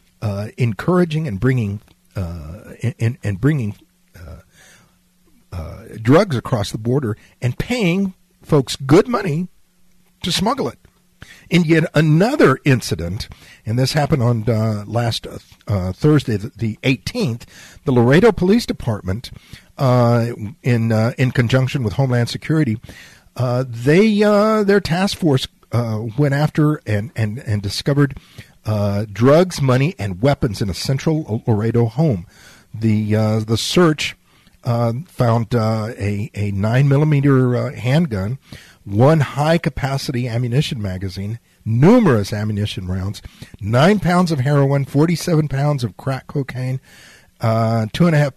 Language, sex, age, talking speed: English, male, 50-69, 125 wpm